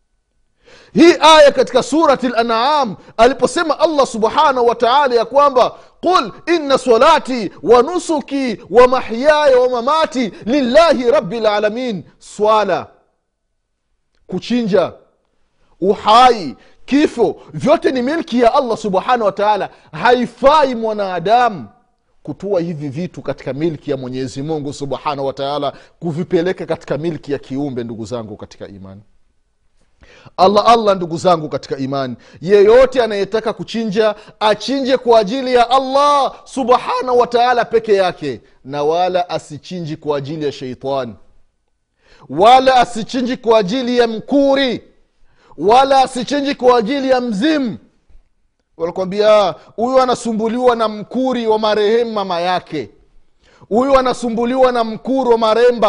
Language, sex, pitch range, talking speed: Swahili, male, 175-255 Hz, 115 wpm